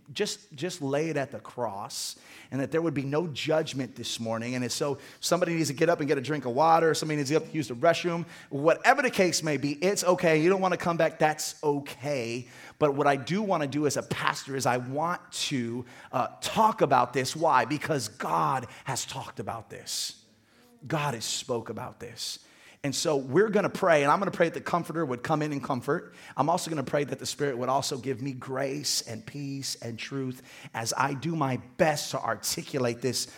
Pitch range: 120-155 Hz